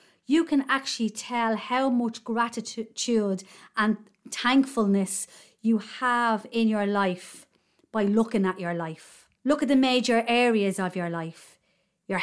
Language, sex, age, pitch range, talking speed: English, female, 30-49, 190-240 Hz, 135 wpm